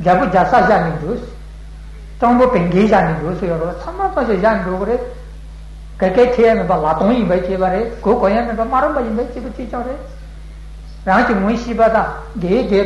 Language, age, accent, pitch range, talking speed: Italian, 60-79, Indian, 185-245 Hz, 175 wpm